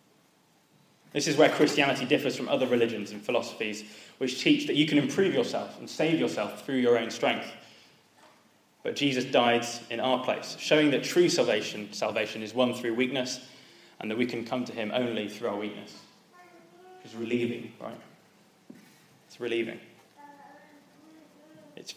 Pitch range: 120-150 Hz